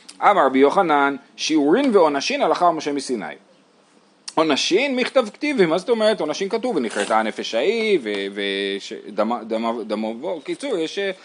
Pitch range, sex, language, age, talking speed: 120-190 Hz, male, Hebrew, 30-49, 145 wpm